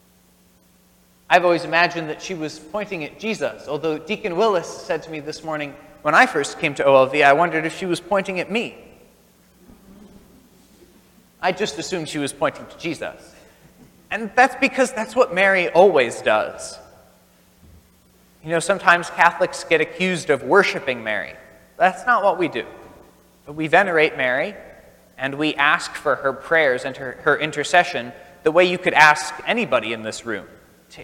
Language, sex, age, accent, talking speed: English, male, 30-49, American, 165 wpm